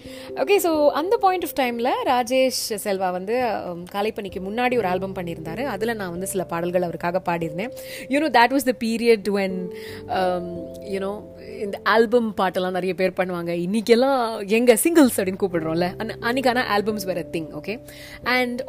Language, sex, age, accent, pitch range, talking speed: Tamil, female, 30-49, native, 190-270 Hz, 150 wpm